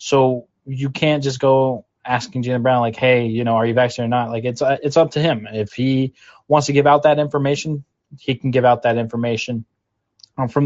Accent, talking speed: American, 225 wpm